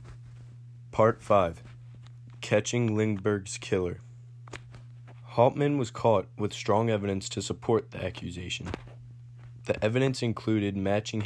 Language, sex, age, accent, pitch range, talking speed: English, male, 20-39, American, 100-120 Hz, 100 wpm